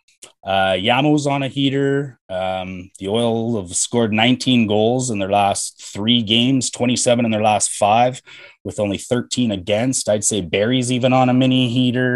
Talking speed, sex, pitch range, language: 170 wpm, male, 105-125 Hz, English